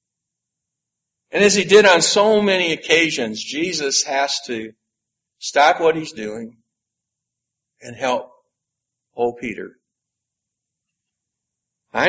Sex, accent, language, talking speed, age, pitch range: male, American, English, 100 wpm, 60-79, 140-210 Hz